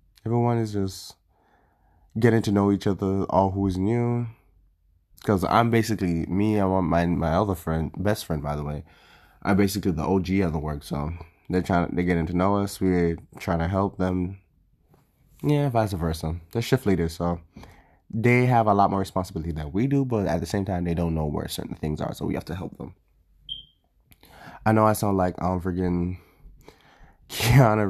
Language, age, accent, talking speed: English, 20-39, American, 200 wpm